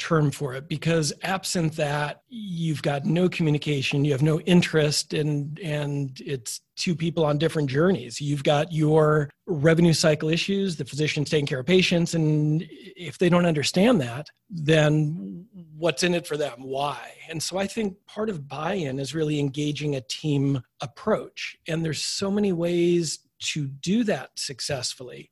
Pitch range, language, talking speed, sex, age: 145-175 Hz, English, 160 wpm, male, 40-59